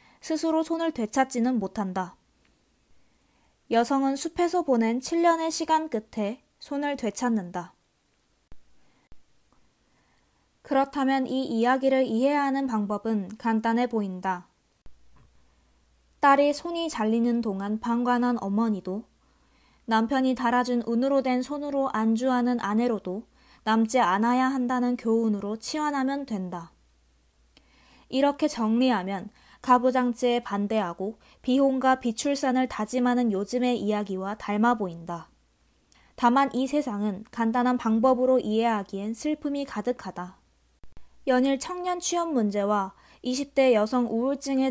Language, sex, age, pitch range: Korean, female, 20-39, 205-260 Hz